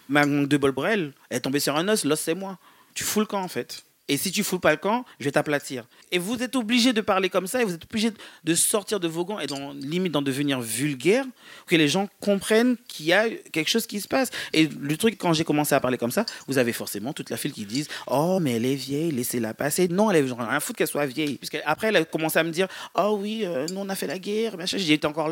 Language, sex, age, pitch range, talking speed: French, male, 40-59, 150-215 Hz, 280 wpm